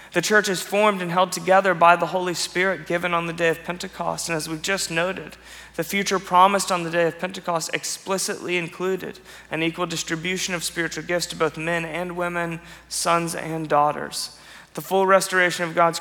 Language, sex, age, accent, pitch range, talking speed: English, male, 30-49, American, 160-185 Hz, 190 wpm